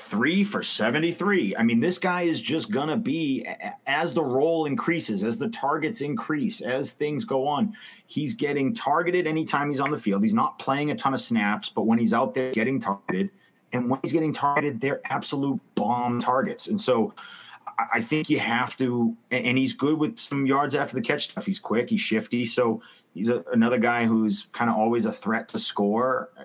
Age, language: 30-49, English